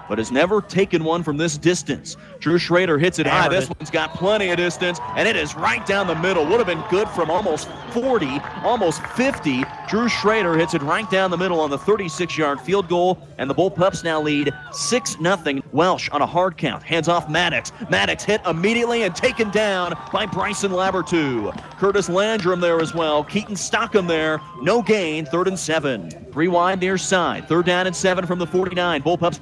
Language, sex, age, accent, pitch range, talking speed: English, male, 40-59, American, 170-270 Hz, 195 wpm